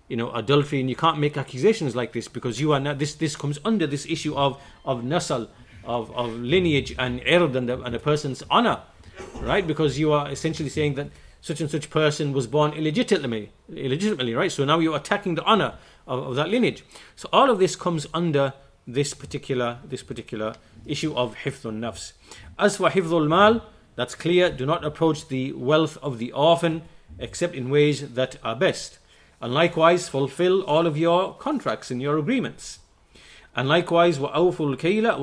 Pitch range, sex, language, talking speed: 130-165 Hz, male, English, 180 wpm